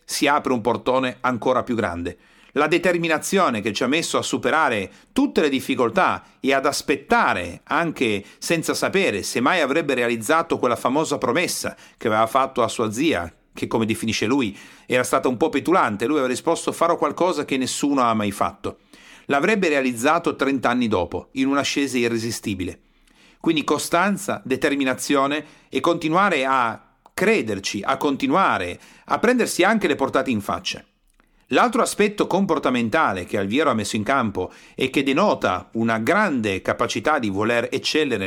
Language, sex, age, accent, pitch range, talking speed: Italian, male, 40-59, native, 125-170 Hz, 155 wpm